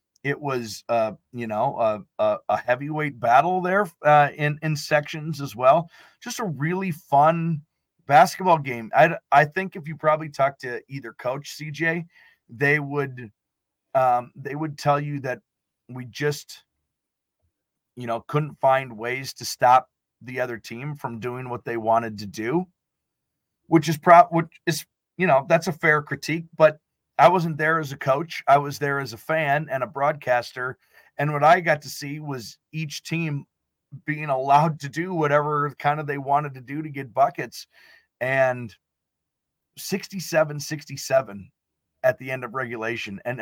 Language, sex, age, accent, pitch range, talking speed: English, male, 30-49, American, 130-160 Hz, 165 wpm